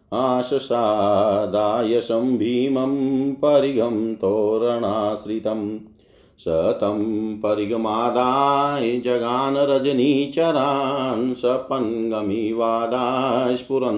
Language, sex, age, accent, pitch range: Hindi, male, 40-59, native, 110-140 Hz